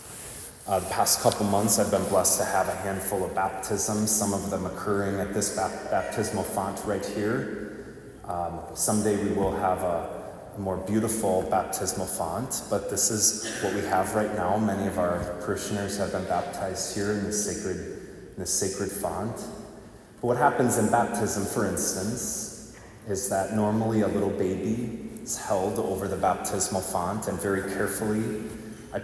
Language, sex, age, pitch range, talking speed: English, male, 30-49, 95-110 Hz, 165 wpm